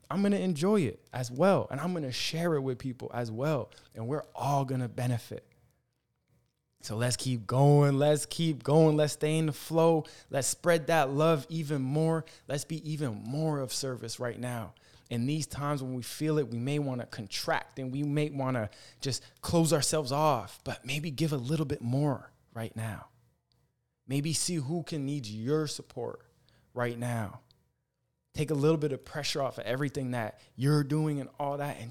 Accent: American